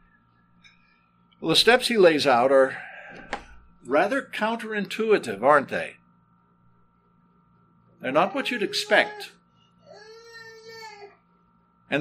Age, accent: 60-79, American